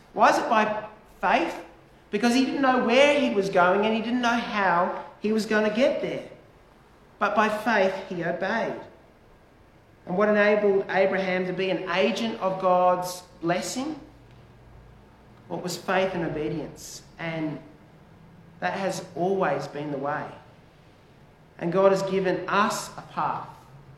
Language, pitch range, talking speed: English, 170-210 Hz, 150 wpm